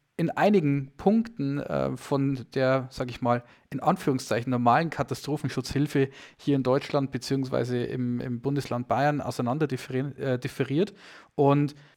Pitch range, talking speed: 130-155 Hz, 125 wpm